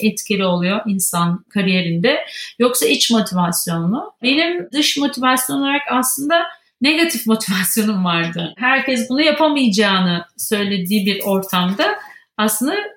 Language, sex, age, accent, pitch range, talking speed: Turkish, female, 40-59, native, 210-295 Hz, 100 wpm